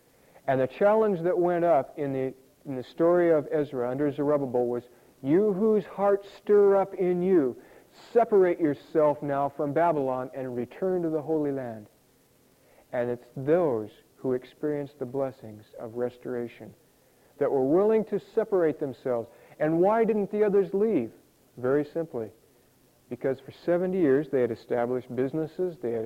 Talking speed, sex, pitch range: 155 wpm, male, 125-175 Hz